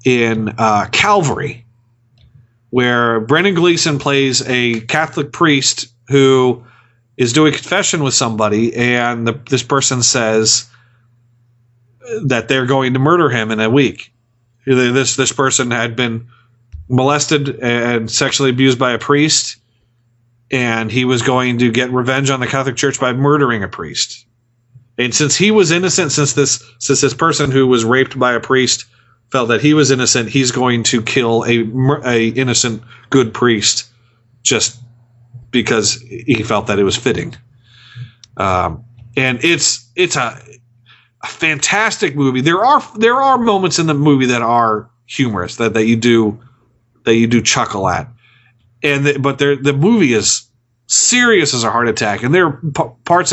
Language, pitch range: English, 120-140 Hz